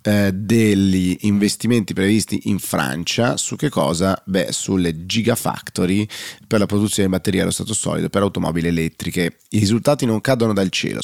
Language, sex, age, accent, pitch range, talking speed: Italian, male, 30-49, native, 90-105 Hz, 150 wpm